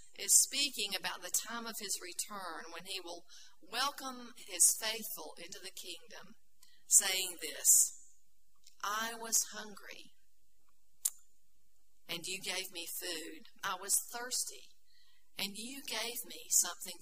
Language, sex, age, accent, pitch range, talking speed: English, female, 40-59, American, 185-245 Hz, 125 wpm